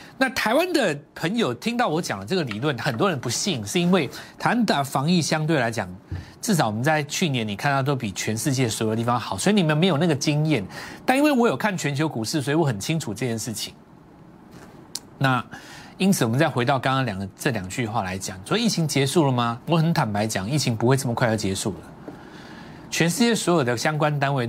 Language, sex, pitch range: Chinese, male, 115-175 Hz